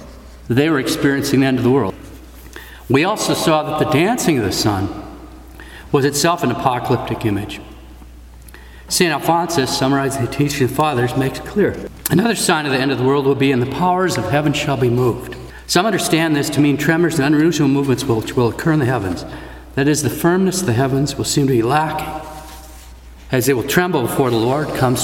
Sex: male